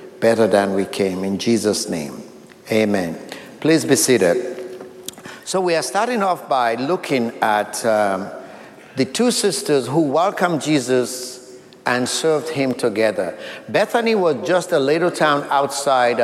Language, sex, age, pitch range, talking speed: English, male, 50-69, 115-150 Hz, 135 wpm